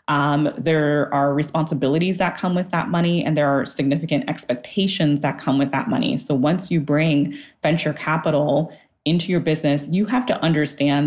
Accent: American